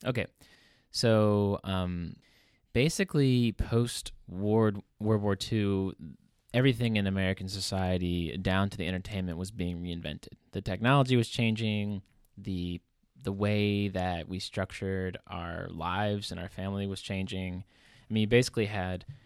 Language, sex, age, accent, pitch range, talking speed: English, male, 20-39, American, 95-110 Hz, 125 wpm